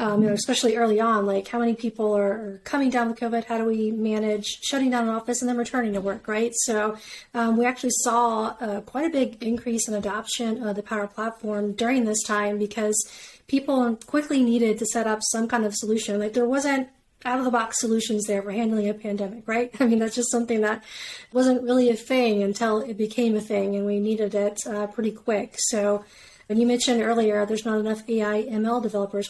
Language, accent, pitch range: English, American, 210-235 Hz